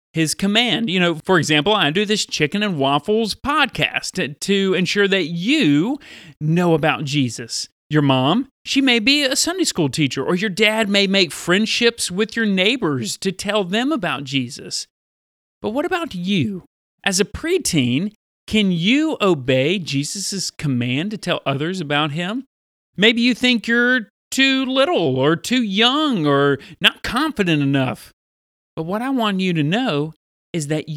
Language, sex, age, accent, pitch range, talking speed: English, male, 40-59, American, 150-220 Hz, 160 wpm